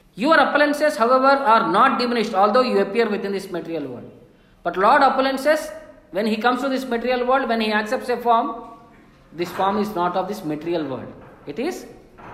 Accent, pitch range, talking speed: Indian, 175-245 Hz, 185 wpm